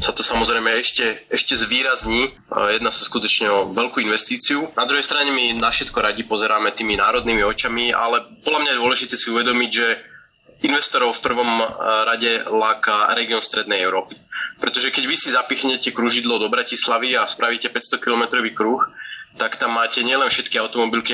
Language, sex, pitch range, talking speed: Slovak, male, 110-125 Hz, 160 wpm